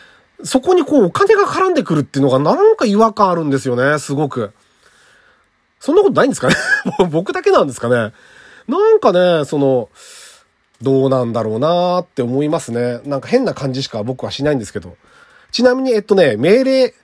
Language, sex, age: Japanese, male, 40-59